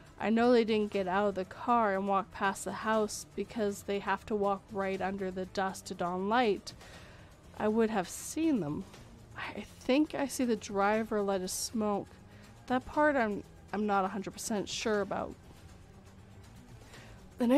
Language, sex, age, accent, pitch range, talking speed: English, female, 30-49, American, 195-235 Hz, 165 wpm